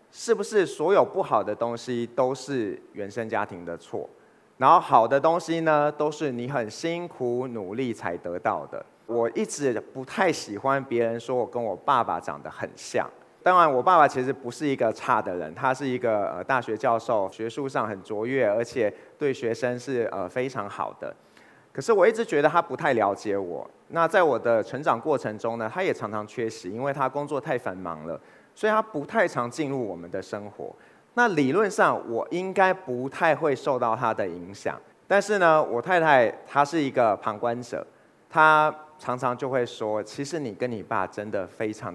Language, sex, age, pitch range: Chinese, male, 30-49, 115-155 Hz